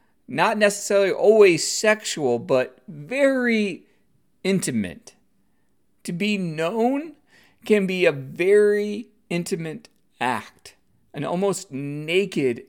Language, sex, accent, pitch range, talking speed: English, male, American, 160-205 Hz, 90 wpm